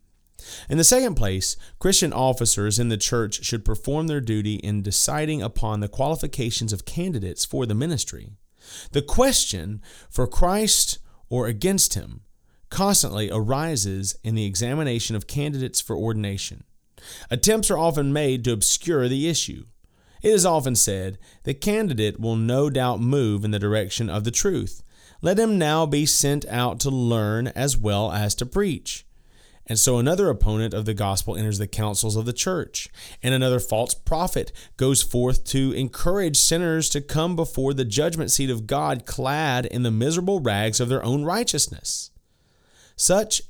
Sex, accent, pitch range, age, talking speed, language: male, American, 105-145 Hz, 30-49, 160 wpm, English